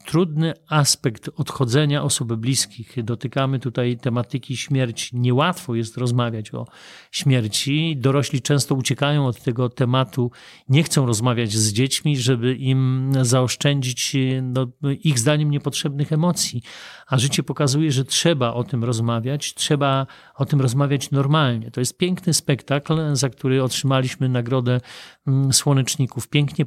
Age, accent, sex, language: 40-59, native, male, Polish